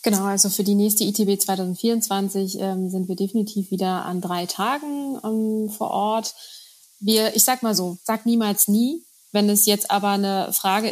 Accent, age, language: German, 20-39, German